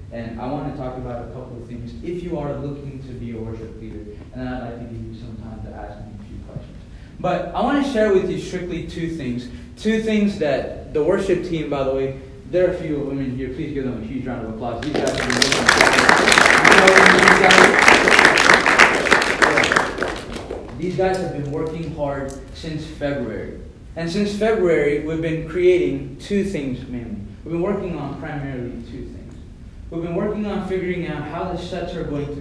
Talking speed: 195 wpm